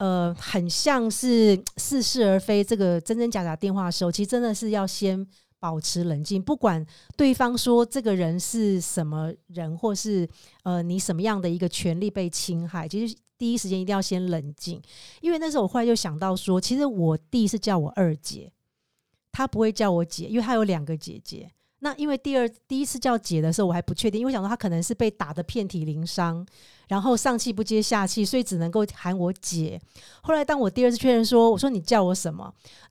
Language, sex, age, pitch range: Chinese, female, 50-69, 175-235 Hz